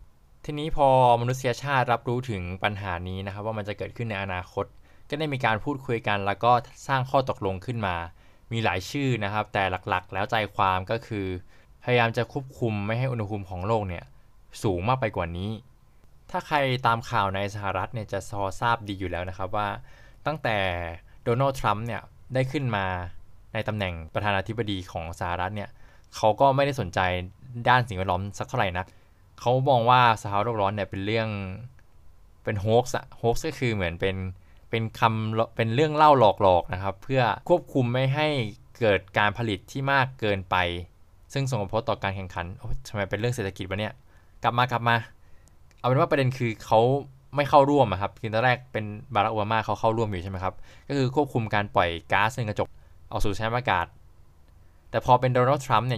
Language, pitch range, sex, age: Thai, 95-125 Hz, male, 20-39